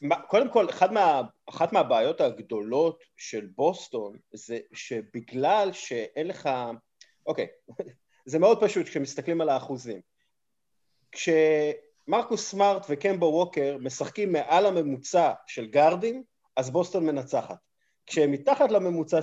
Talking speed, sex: 110 wpm, male